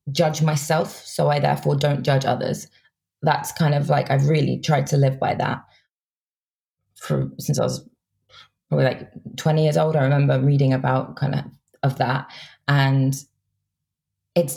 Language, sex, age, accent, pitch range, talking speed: English, female, 20-39, British, 135-155 Hz, 155 wpm